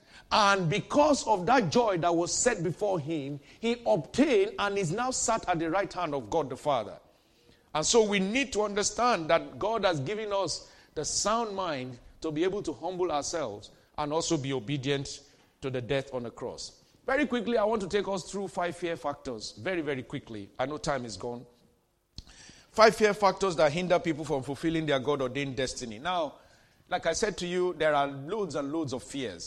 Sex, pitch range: male, 130-190 Hz